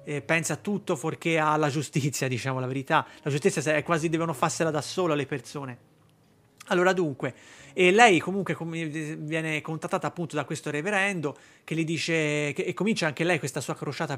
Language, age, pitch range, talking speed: Italian, 30-49, 150-170 Hz, 180 wpm